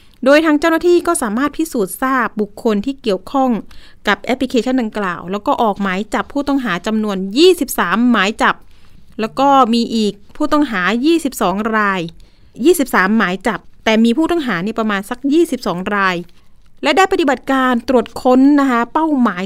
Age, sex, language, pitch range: 30-49, female, Thai, 215-270 Hz